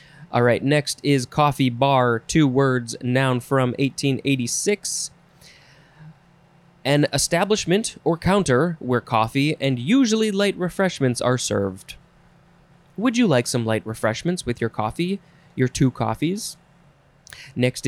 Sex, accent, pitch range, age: male, American, 125-165 Hz, 20-39